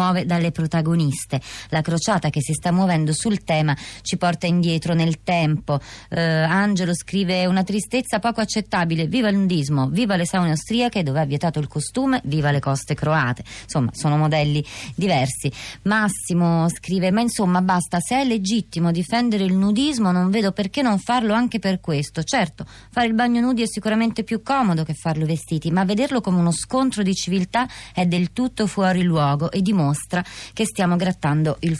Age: 30-49